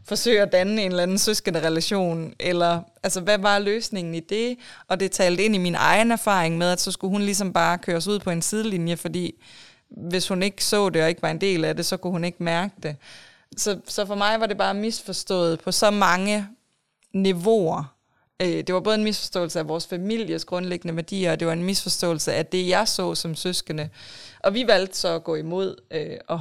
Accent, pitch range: native, 165-200 Hz